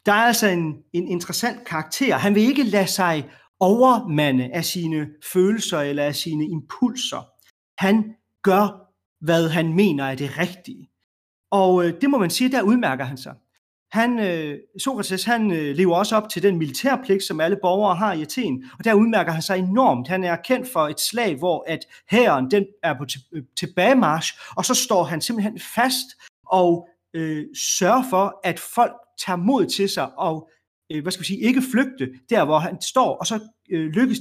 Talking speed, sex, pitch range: 170 wpm, male, 155-215 Hz